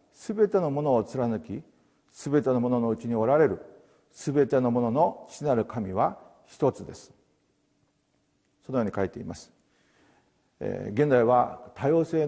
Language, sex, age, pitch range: Japanese, male, 50-69, 120-155 Hz